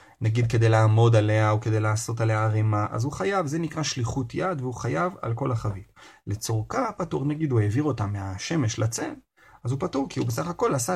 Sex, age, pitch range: male, 30-49, 115-150 Hz